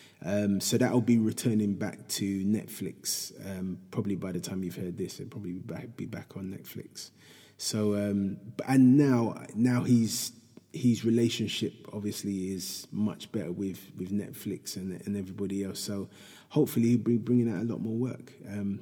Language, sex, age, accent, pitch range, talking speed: English, male, 20-39, British, 100-120 Hz, 180 wpm